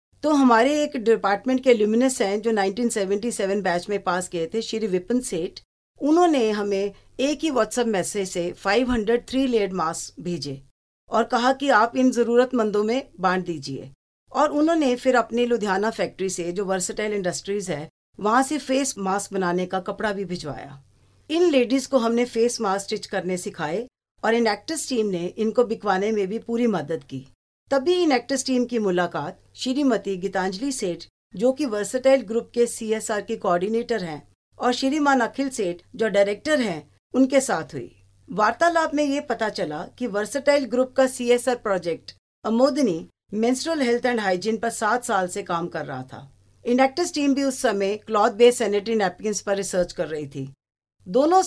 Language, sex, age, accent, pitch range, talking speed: Hindi, female, 50-69, native, 190-250 Hz, 170 wpm